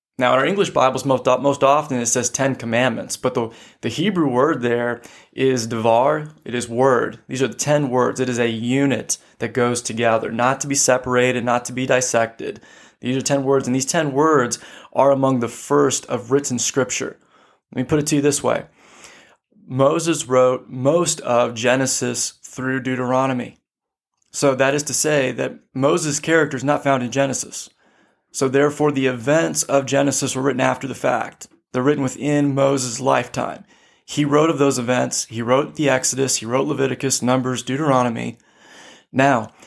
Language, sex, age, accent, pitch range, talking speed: English, male, 20-39, American, 125-140 Hz, 175 wpm